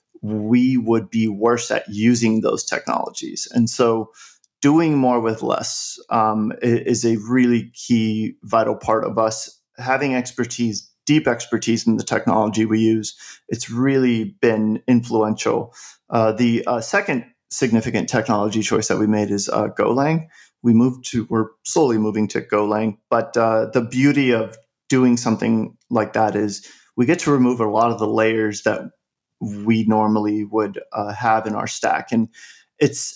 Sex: male